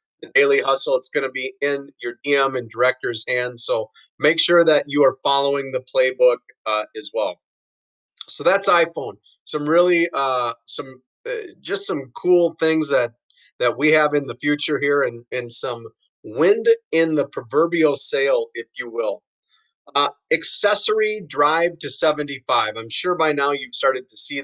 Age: 30-49